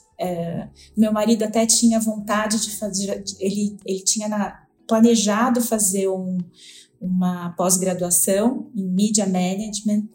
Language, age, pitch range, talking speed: Portuguese, 20-39, 190-230 Hz, 100 wpm